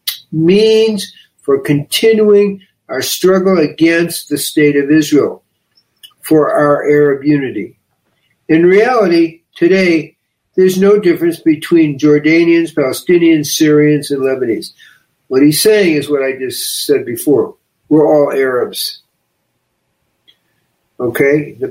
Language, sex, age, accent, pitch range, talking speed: English, male, 60-79, American, 145-190 Hz, 110 wpm